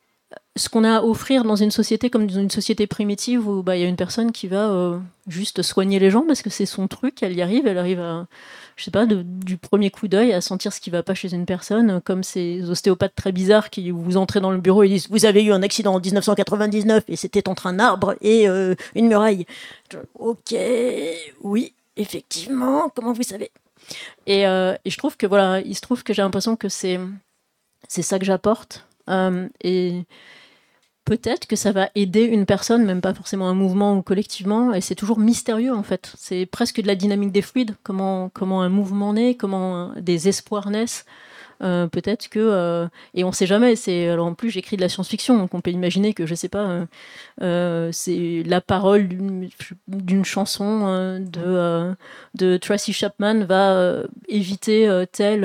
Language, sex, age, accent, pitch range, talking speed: French, female, 30-49, French, 185-215 Hz, 210 wpm